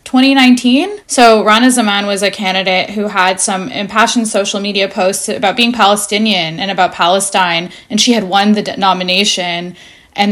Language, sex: English, female